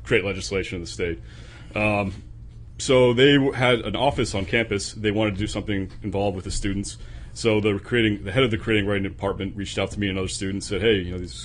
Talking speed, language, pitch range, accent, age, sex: 235 wpm, English, 100-115 Hz, American, 30-49, male